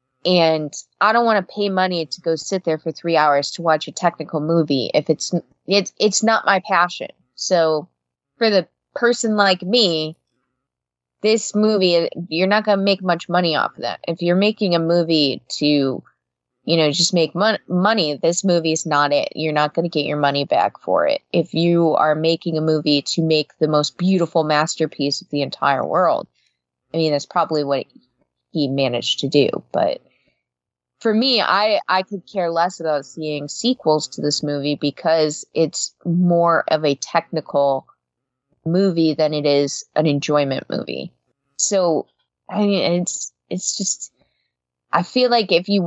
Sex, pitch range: female, 150-180 Hz